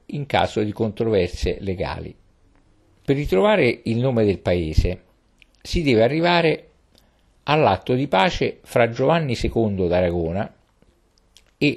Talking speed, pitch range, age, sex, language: 110 wpm, 90-130 Hz, 50-69, male, Italian